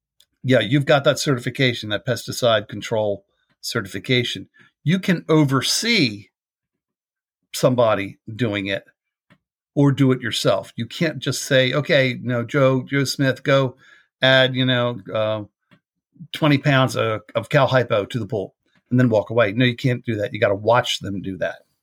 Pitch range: 120-145 Hz